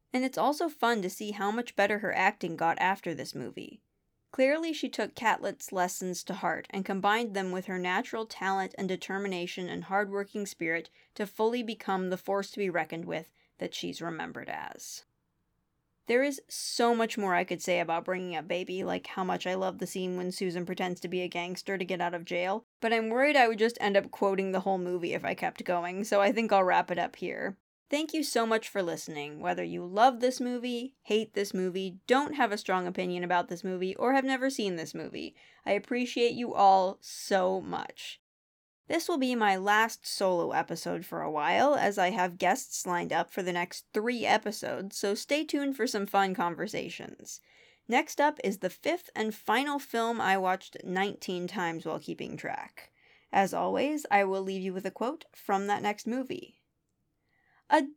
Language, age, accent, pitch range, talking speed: English, 20-39, American, 185-235 Hz, 200 wpm